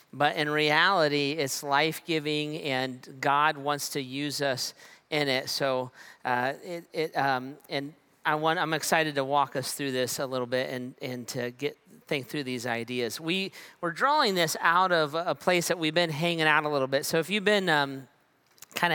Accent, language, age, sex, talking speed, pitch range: American, English, 40-59, male, 195 wpm, 140-165 Hz